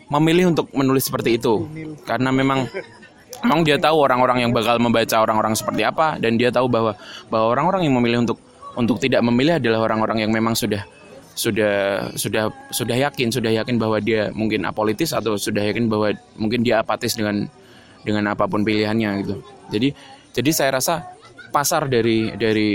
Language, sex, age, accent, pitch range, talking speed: Indonesian, male, 20-39, native, 105-125 Hz, 165 wpm